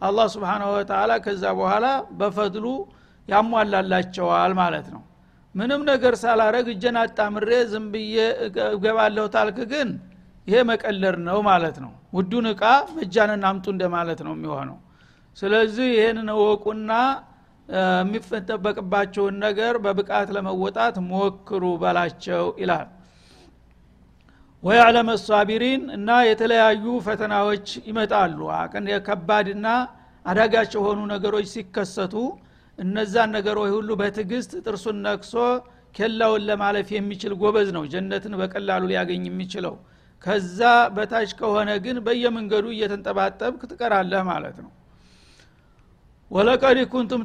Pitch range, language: 195-225 Hz, Amharic